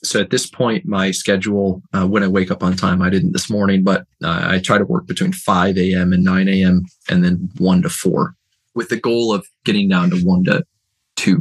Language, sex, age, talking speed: English, male, 20-39, 230 wpm